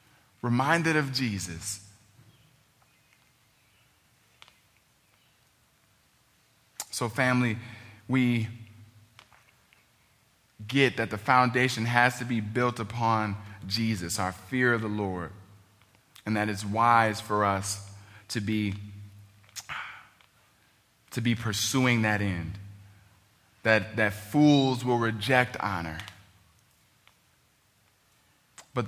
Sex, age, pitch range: male, 20-39, 100-120 Hz